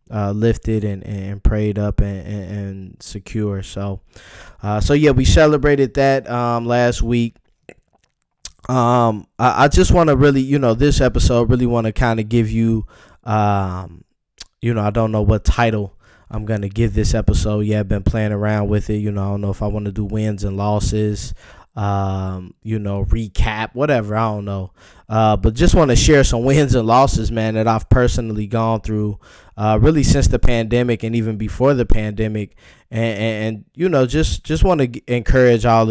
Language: English